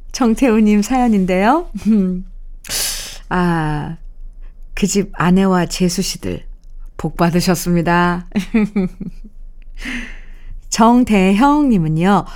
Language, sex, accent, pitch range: Korean, female, native, 175-225 Hz